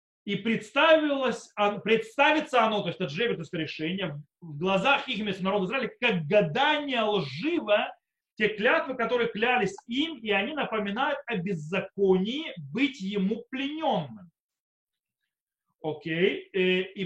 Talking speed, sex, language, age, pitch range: 110 wpm, male, Russian, 30-49, 185-255 Hz